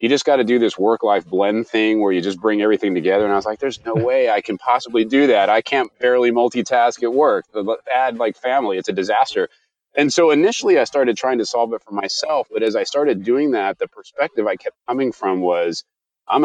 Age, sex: 30-49, male